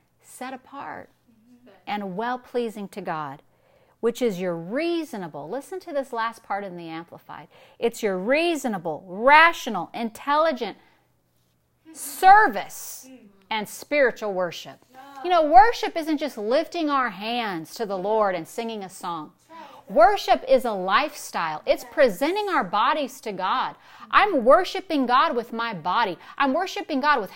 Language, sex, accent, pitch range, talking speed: English, female, American, 195-290 Hz, 135 wpm